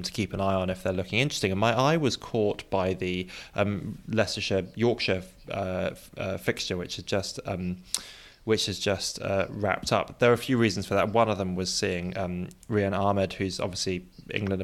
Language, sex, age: English, male, 20-39